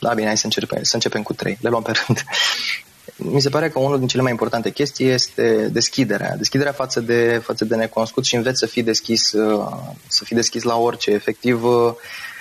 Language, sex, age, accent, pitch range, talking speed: Romanian, male, 20-39, native, 110-125 Hz, 205 wpm